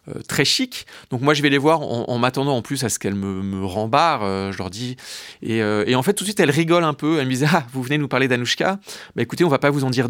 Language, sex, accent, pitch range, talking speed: French, male, French, 110-145 Hz, 320 wpm